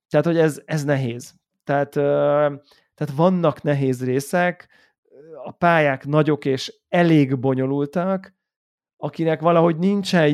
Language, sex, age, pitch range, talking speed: Hungarian, male, 30-49, 140-175 Hz, 115 wpm